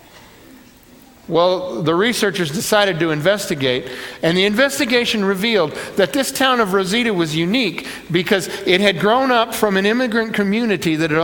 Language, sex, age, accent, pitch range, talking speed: English, male, 50-69, American, 165-220 Hz, 150 wpm